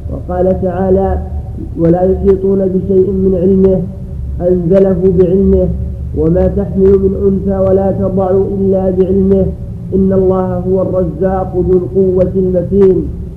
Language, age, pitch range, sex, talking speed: Arabic, 50-69, 170-190 Hz, male, 110 wpm